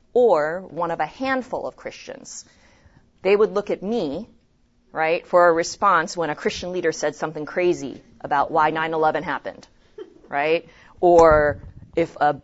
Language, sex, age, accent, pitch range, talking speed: English, female, 30-49, American, 155-230 Hz, 150 wpm